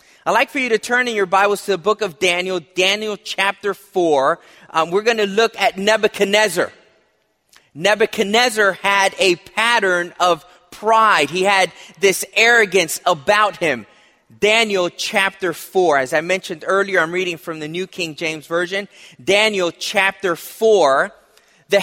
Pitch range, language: 185-230 Hz, English